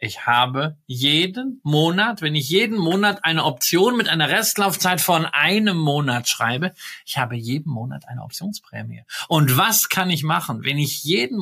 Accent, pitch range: German, 130-180 Hz